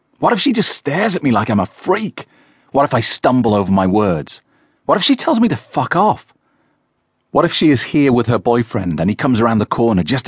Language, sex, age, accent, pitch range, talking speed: English, male, 40-59, British, 95-130 Hz, 240 wpm